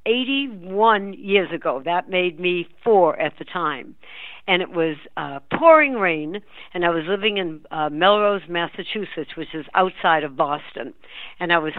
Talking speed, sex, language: 165 wpm, female, English